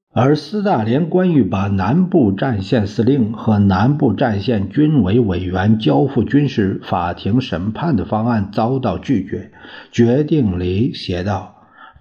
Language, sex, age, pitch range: Chinese, male, 50-69, 100-125 Hz